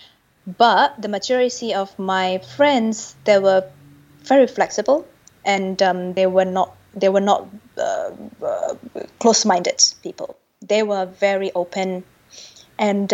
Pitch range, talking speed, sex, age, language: 185-230 Hz, 125 wpm, female, 20-39, English